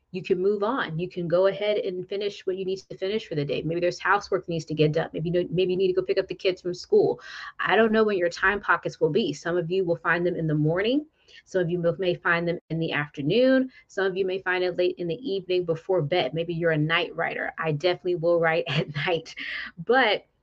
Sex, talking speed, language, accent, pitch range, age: female, 265 wpm, English, American, 165-190 Hz, 20-39